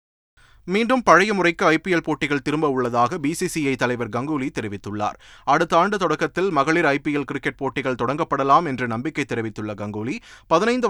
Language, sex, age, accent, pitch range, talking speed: Tamil, male, 30-49, native, 125-170 Hz, 145 wpm